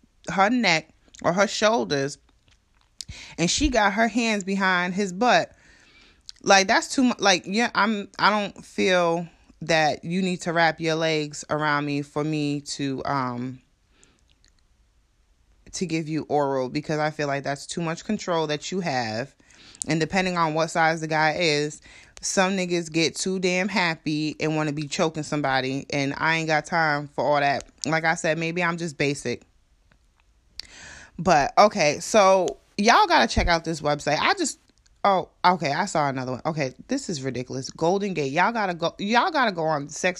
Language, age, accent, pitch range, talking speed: English, 20-39, American, 150-205 Hz, 175 wpm